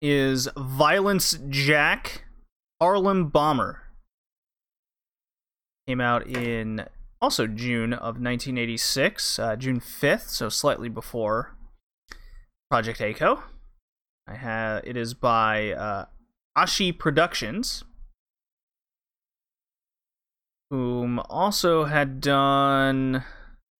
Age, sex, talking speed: 30-49, male, 80 wpm